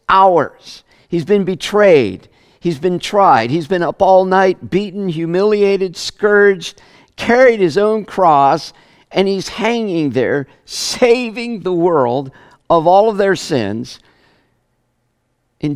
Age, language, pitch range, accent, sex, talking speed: 50-69, English, 130-190 Hz, American, male, 120 wpm